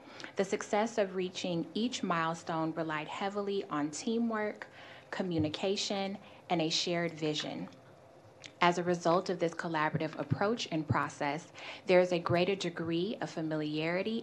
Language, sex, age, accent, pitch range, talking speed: English, female, 20-39, American, 155-195 Hz, 130 wpm